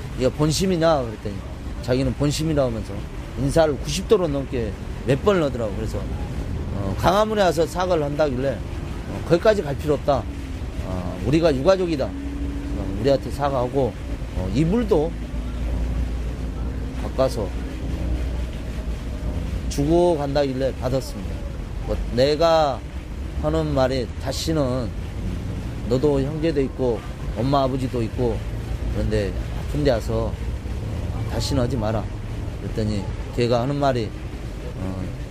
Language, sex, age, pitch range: Korean, male, 30-49, 85-140 Hz